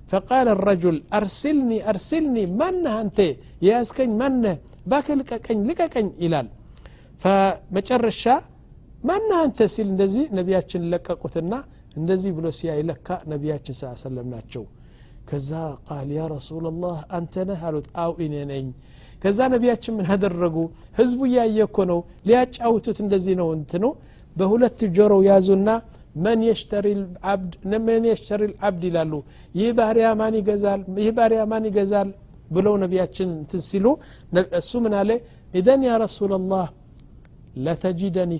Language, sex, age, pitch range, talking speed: Amharic, male, 60-79, 160-220 Hz, 105 wpm